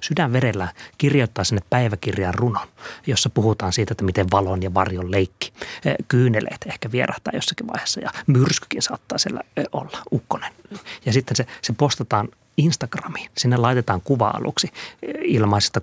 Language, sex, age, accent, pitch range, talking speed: Finnish, male, 30-49, native, 105-125 Hz, 140 wpm